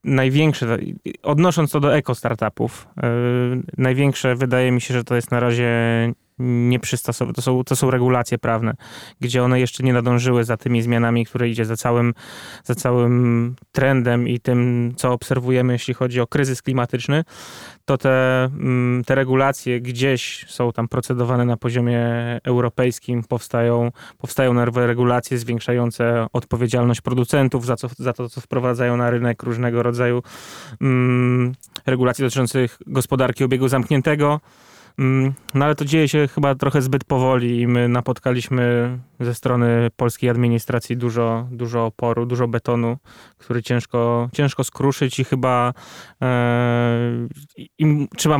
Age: 20-39